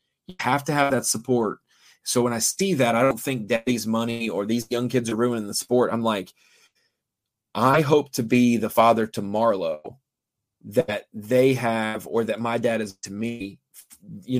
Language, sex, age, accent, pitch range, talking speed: English, male, 30-49, American, 115-140 Hz, 185 wpm